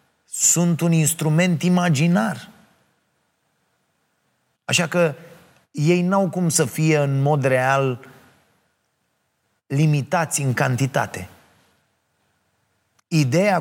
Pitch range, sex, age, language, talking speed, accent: 120-145 Hz, male, 30-49, Romanian, 80 wpm, native